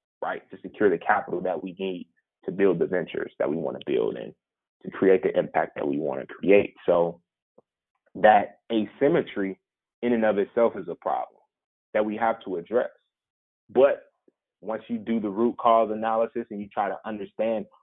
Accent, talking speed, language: American, 185 wpm, English